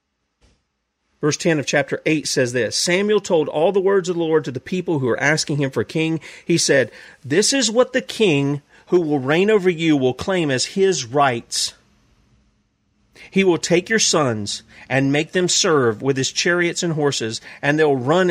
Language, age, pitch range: English, 40-59, 120-170 Hz